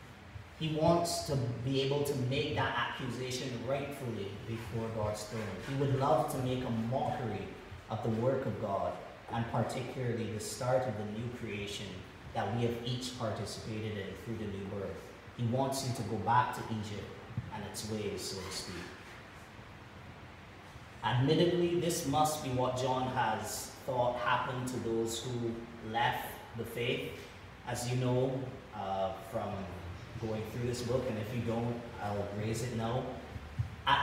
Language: English